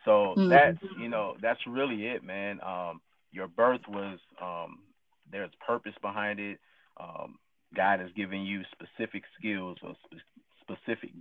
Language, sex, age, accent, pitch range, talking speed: English, male, 30-49, American, 95-110 Hz, 145 wpm